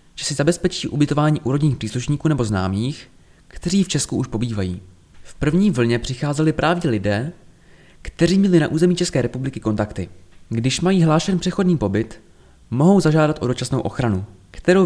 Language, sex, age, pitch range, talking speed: Czech, male, 20-39, 110-165 Hz, 150 wpm